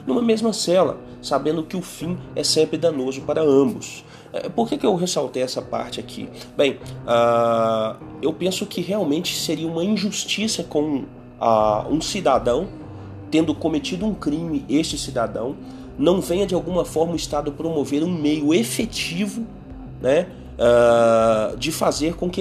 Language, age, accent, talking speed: Portuguese, 30-49, Brazilian, 150 wpm